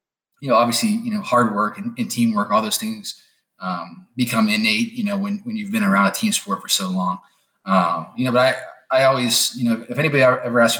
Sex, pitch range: male, 135-215 Hz